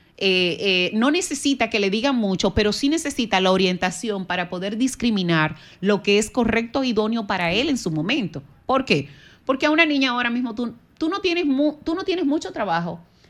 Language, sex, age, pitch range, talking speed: Spanish, female, 30-49, 175-235 Hz, 200 wpm